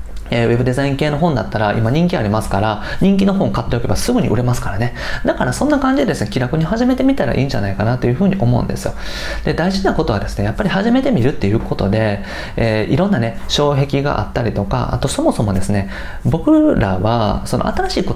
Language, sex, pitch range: Japanese, male, 105-170 Hz